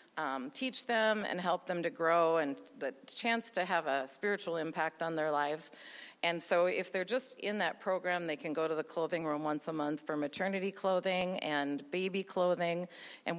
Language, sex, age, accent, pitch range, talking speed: English, female, 40-59, American, 145-180 Hz, 195 wpm